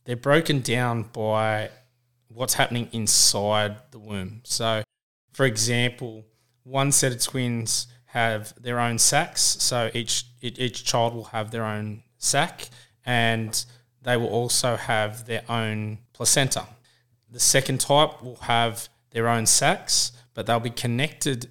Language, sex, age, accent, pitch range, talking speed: English, male, 20-39, Australian, 110-125 Hz, 135 wpm